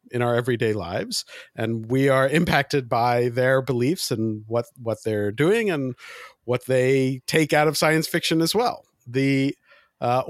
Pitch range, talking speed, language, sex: 110-160 Hz, 165 wpm, English, male